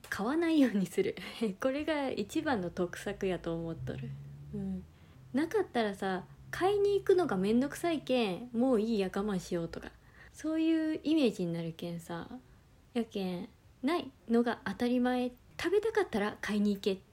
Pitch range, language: 185-265 Hz, Japanese